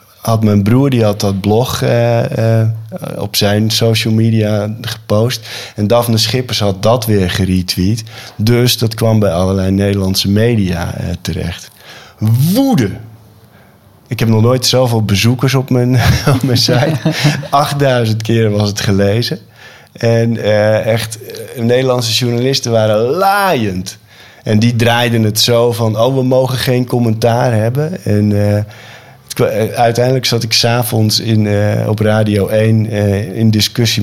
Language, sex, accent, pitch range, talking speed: Dutch, male, Dutch, 105-120 Hz, 140 wpm